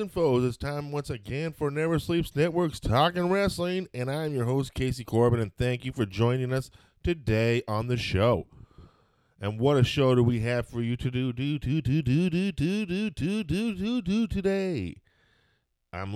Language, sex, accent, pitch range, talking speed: English, male, American, 95-140 Hz, 175 wpm